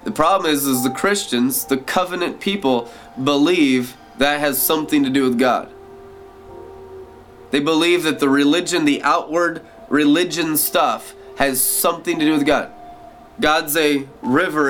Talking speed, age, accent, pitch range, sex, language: 145 wpm, 20-39, American, 130-165 Hz, male, English